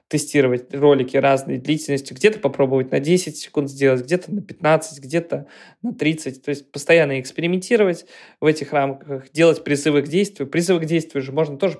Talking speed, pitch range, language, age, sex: 170 wpm, 140-170 Hz, Russian, 20-39, male